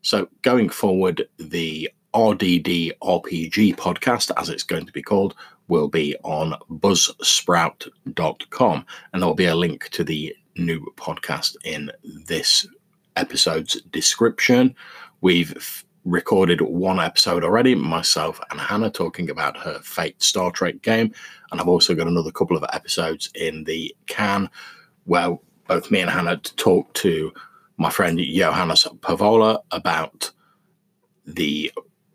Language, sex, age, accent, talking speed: English, male, 30-49, British, 130 wpm